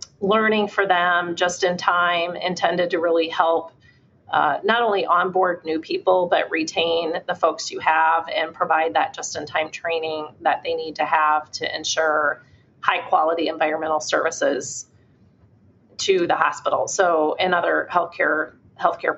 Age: 30-49